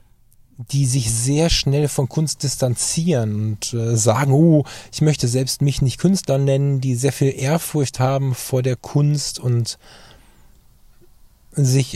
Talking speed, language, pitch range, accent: 135 wpm, German, 115-145 Hz, German